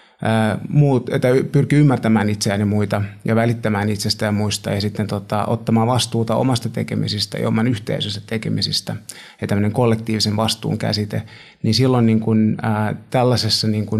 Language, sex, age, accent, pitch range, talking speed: Finnish, male, 30-49, native, 105-115 Hz, 125 wpm